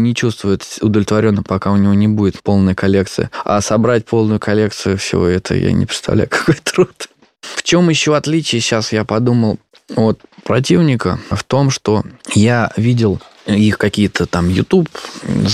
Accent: native